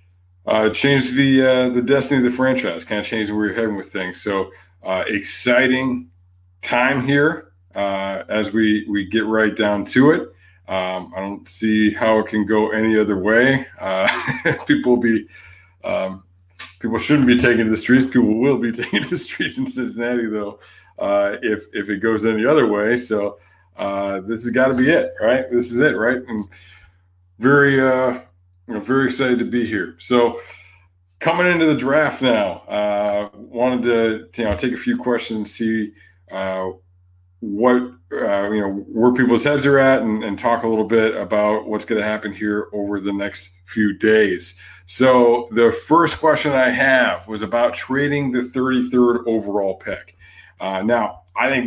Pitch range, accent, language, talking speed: 95-125 Hz, American, English, 180 wpm